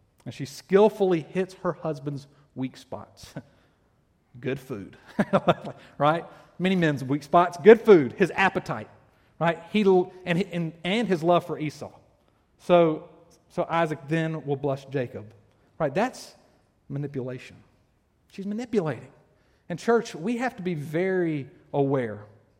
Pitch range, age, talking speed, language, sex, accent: 130-180 Hz, 40-59, 125 wpm, English, male, American